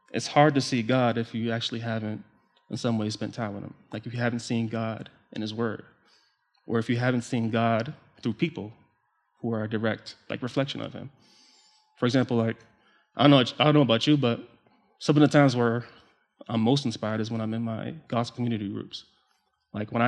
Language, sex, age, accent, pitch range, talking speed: English, male, 20-39, American, 110-130 Hz, 210 wpm